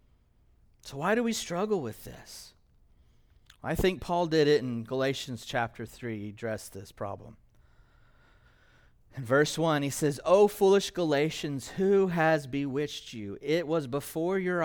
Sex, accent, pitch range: male, American, 130-190 Hz